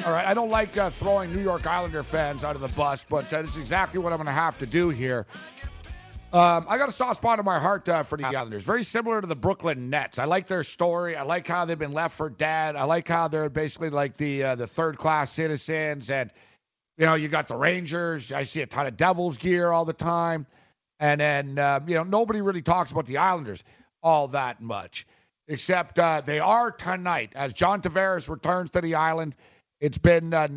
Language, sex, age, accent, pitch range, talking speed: English, male, 50-69, American, 150-190 Hz, 230 wpm